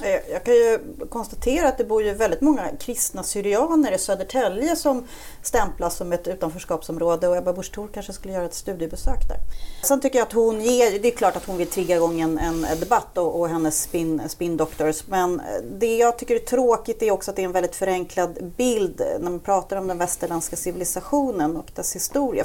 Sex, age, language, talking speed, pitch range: female, 30-49, Swedish, 200 wpm, 175-245 Hz